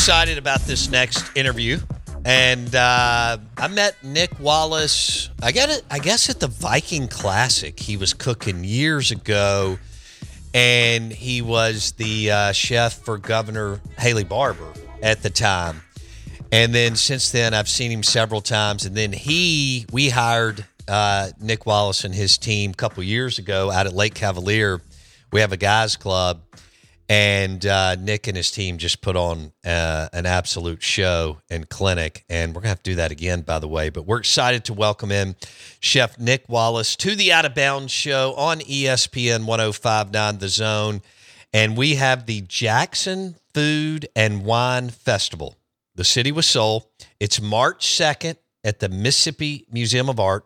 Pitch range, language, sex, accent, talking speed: 100-125 Hz, English, male, American, 165 wpm